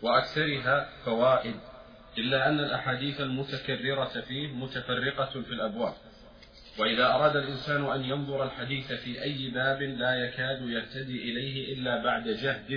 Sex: male